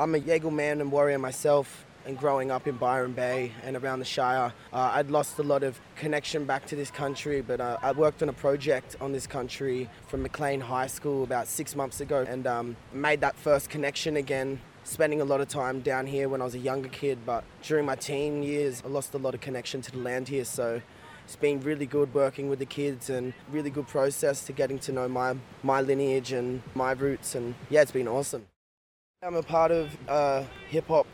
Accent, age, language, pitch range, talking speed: Australian, 20-39, English, 130-150 Hz, 220 wpm